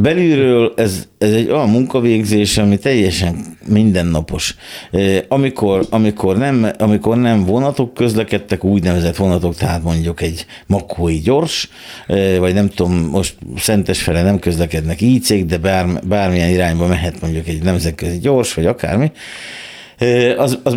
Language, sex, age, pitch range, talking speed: Hungarian, male, 50-69, 90-115 Hz, 130 wpm